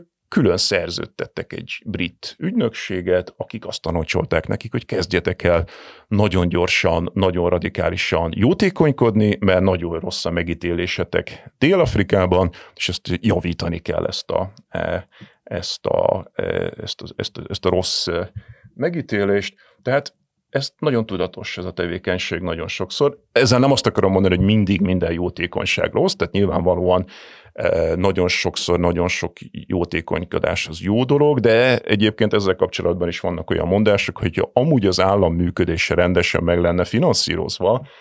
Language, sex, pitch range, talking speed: Hungarian, male, 85-105 Hz, 135 wpm